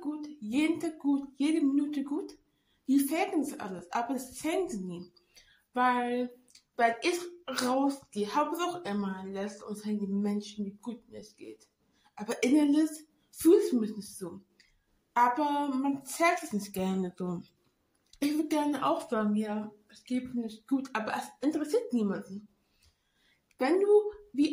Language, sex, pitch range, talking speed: English, female, 210-300 Hz, 150 wpm